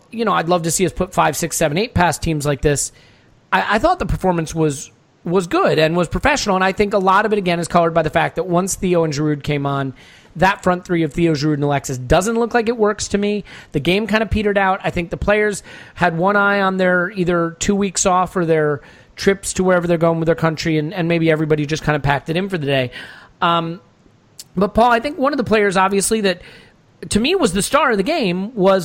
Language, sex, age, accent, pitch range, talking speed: English, male, 30-49, American, 150-200 Hz, 260 wpm